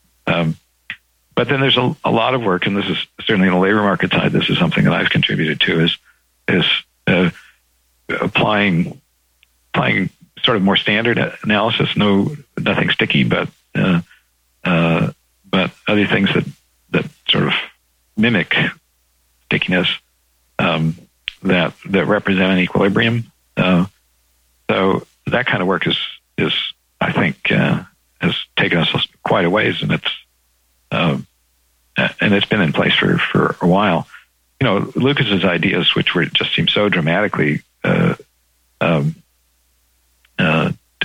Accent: American